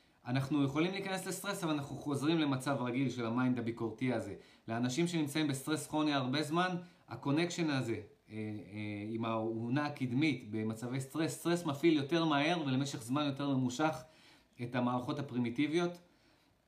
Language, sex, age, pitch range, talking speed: Hebrew, male, 30-49, 125-155 Hz, 135 wpm